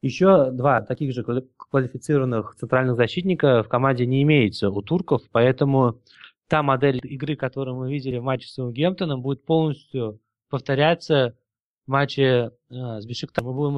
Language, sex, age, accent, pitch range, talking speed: Russian, male, 20-39, native, 125-155 Hz, 150 wpm